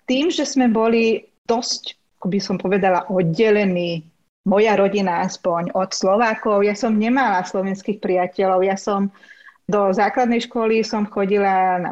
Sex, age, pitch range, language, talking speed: female, 30-49, 185-225 Hz, Slovak, 135 wpm